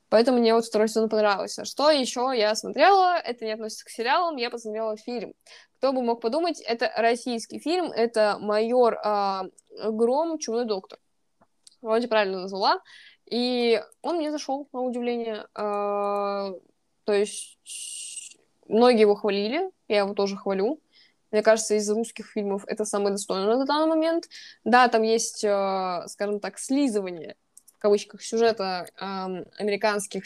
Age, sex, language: 20-39, female, Russian